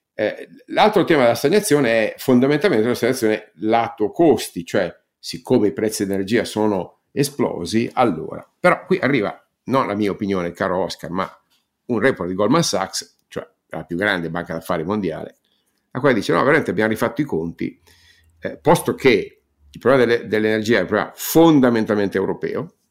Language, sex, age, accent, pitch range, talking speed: Italian, male, 50-69, native, 90-120 Hz, 160 wpm